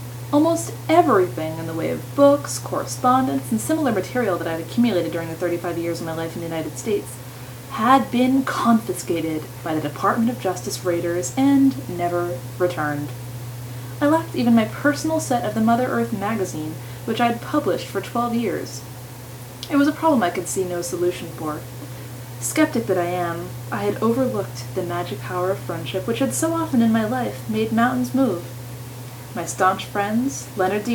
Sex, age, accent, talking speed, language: female, 20-39, American, 180 wpm, English